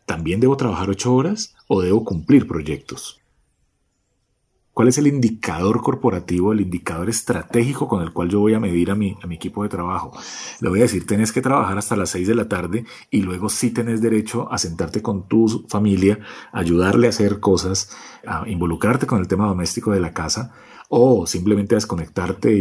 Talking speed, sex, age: 185 wpm, male, 40-59